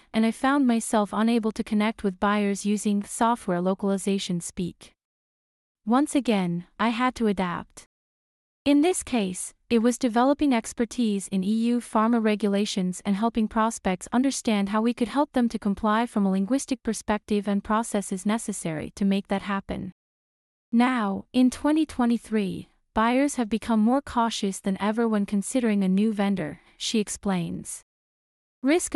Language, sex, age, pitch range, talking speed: English, female, 30-49, 200-240 Hz, 145 wpm